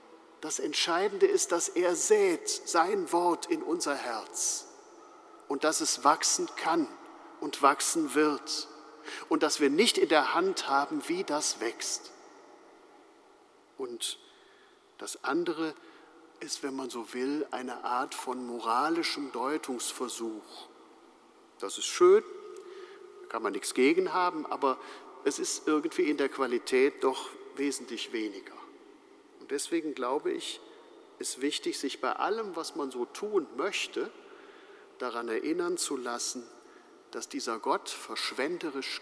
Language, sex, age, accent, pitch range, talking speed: German, male, 50-69, German, 340-415 Hz, 130 wpm